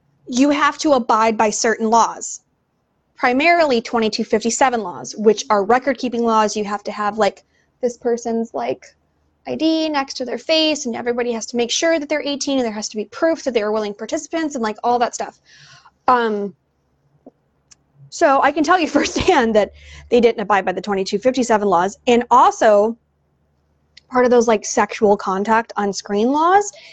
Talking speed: 175 wpm